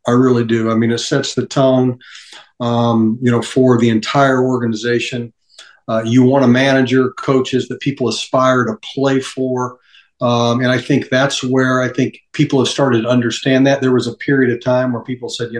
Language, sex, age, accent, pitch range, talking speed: English, male, 50-69, American, 115-130 Hz, 200 wpm